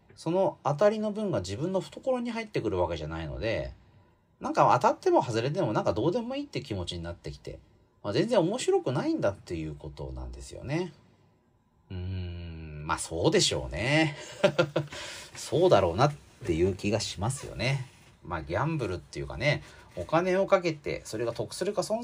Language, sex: Japanese, male